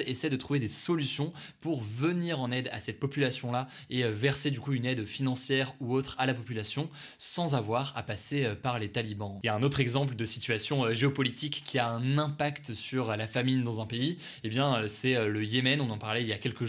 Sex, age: male, 20-39